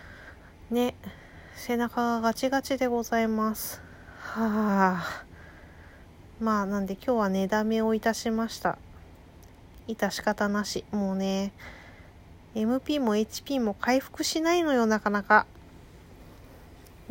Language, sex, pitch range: Japanese, female, 180-235 Hz